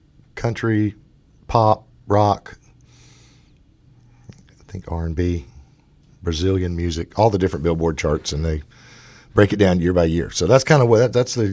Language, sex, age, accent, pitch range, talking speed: English, male, 50-69, American, 85-120 Hz, 155 wpm